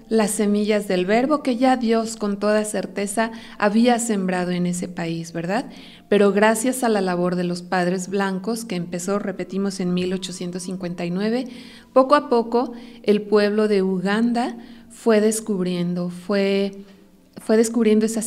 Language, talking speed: Spanish, 140 wpm